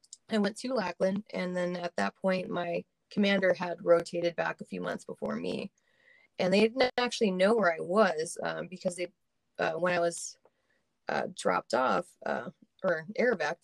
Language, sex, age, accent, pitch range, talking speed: English, female, 20-39, American, 175-210 Hz, 180 wpm